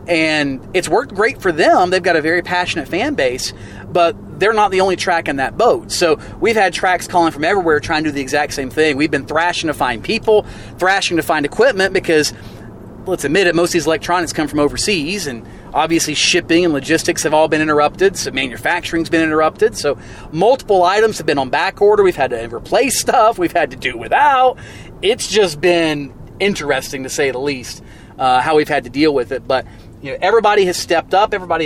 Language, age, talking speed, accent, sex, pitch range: English, 30-49, 210 wpm, American, male, 140-185 Hz